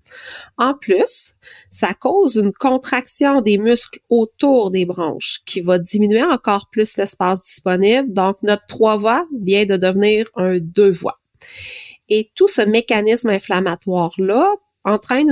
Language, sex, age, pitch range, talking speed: French, female, 30-49, 190-240 Hz, 125 wpm